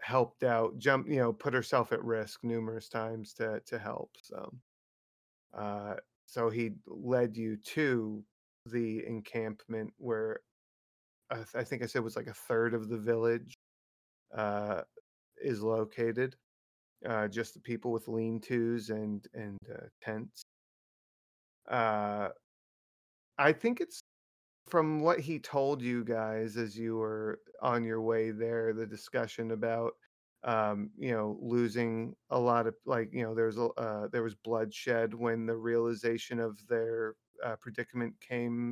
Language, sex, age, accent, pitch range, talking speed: English, male, 30-49, American, 110-120 Hz, 150 wpm